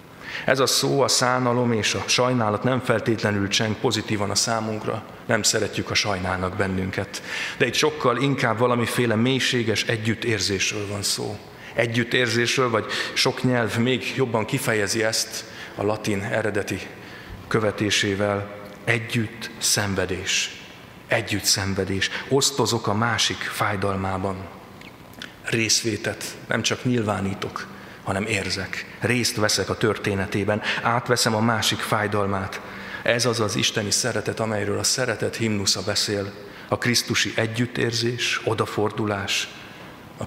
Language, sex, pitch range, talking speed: Hungarian, male, 100-120 Hz, 115 wpm